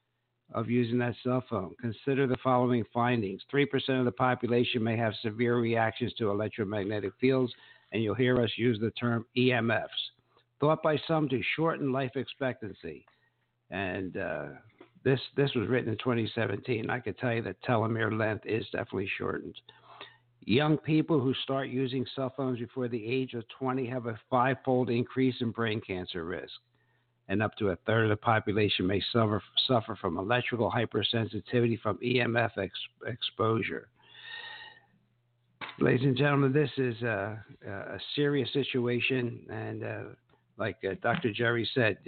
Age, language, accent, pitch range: 60-79, English, American, 110-130 Hz